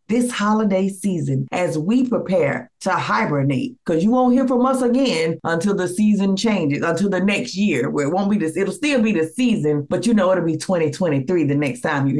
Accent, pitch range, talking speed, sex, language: American, 155-200 Hz, 210 wpm, female, English